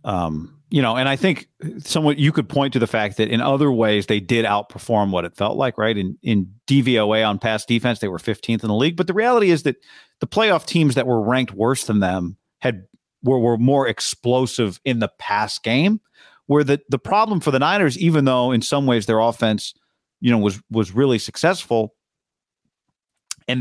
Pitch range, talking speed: 110-145 Hz, 205 wpm